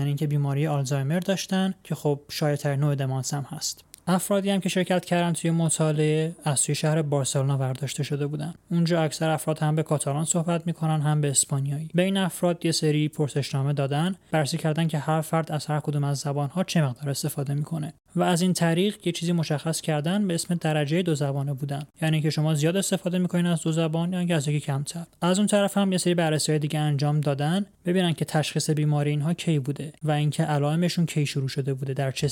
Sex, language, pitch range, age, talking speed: male, Persian, 145-170 Hz, 20-39, 205 wpm